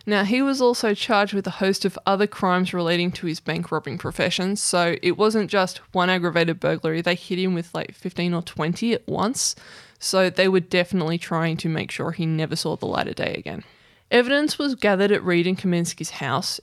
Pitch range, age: 175-210 Hz, 20-39